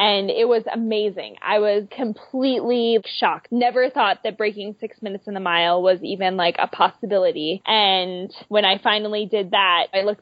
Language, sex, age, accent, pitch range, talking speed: English, female, 20-39, American, 195-240 Hz, 175 wpm